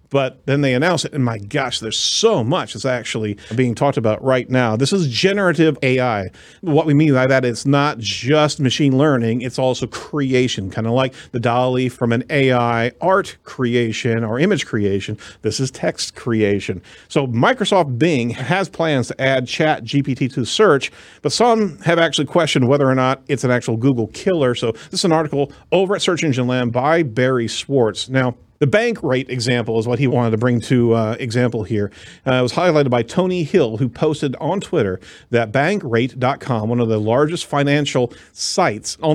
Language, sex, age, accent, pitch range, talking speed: English, male, 40-59, American, 115-145 Hz, 190 wpm